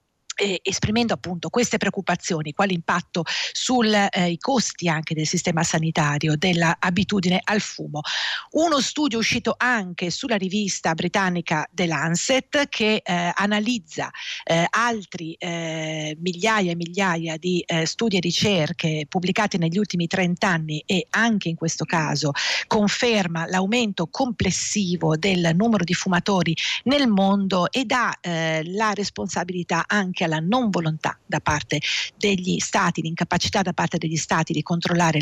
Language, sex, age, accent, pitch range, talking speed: Italian, female, 50-69, native, 165-210 Hz, 135 wpm